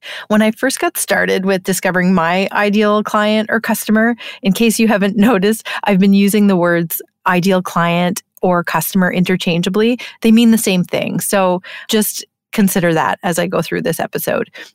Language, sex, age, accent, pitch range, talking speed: English, female, 30-49, American, 180-220 Hz, 170 wpm